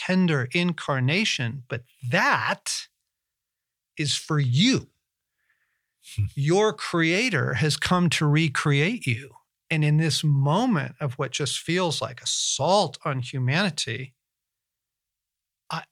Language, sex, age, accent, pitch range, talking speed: English, male, 40-59, American, 140-195 Hz, 100 wpm